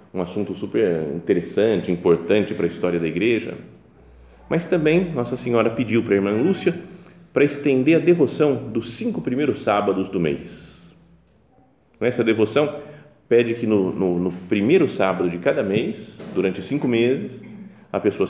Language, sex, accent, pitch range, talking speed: Portuguese, male, Brazilian, 100-140 Hz, 150 wpm